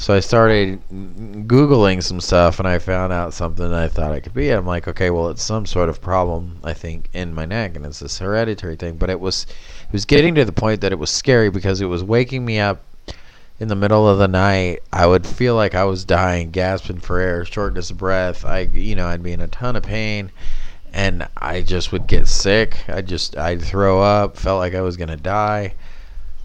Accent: American